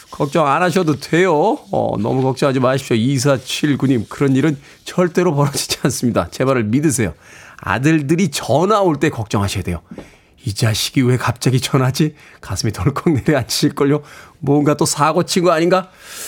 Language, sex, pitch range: Korean, male, 130-185 Hz